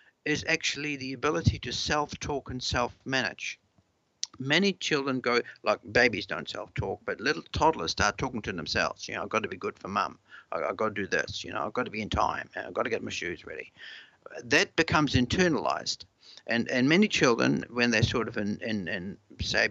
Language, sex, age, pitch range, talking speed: English, male, 60-79, 120-145 Hz, 200 wpm